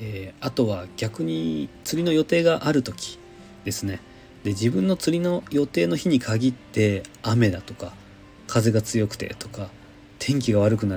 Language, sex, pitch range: Japanese, male, 100-130 Hz